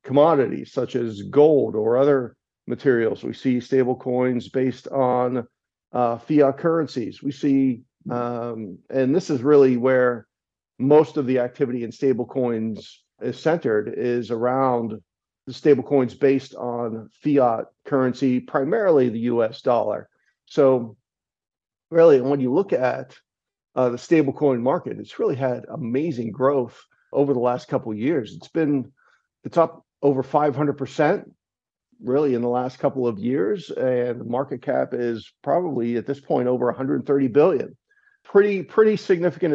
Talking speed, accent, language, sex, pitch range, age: 145 wpm, American, English, male, 120-145 Hz, 50-69